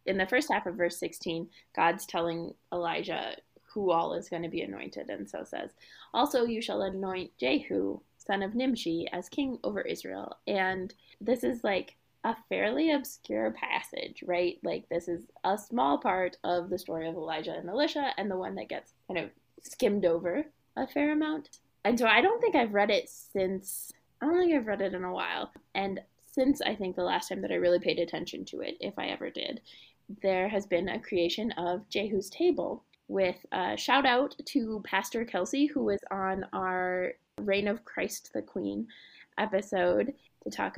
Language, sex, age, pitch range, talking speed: English, female, 20-39, 175-225 Hz, 190 wpm